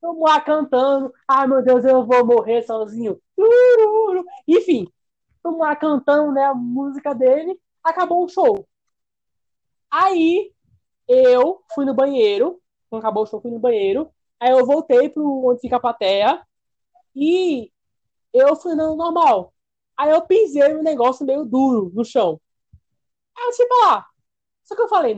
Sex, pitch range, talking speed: female, 215-315 Hz, 155 wpm